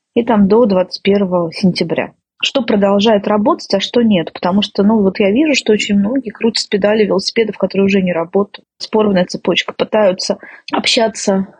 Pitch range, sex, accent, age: 190-220 Hz, female, native, 30-49